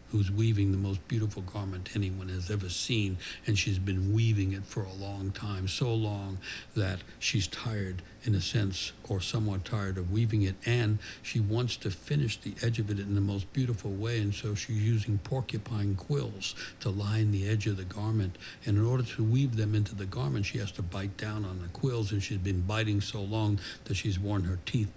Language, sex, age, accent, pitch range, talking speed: English, male, 60-79, American, 100-115 Hz, 210 wpm